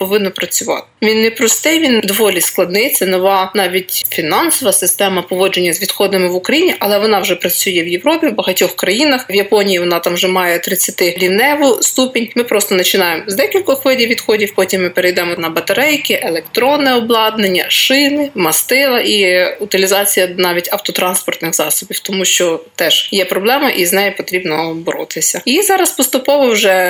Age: 20-39